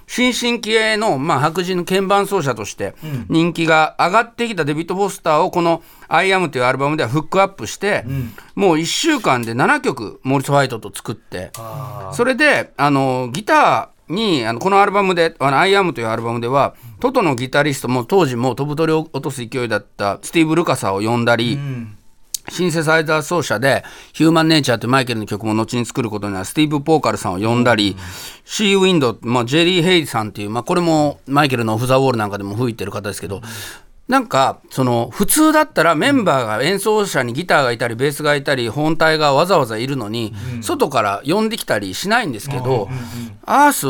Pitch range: 120-180 Hz